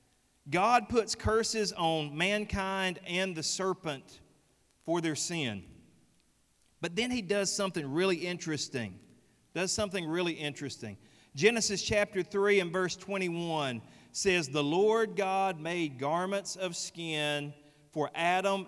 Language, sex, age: English, male, 40-59